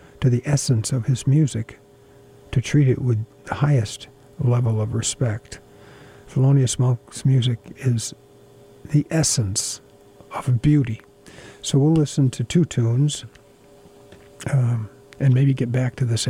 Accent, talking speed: American, 135 wpm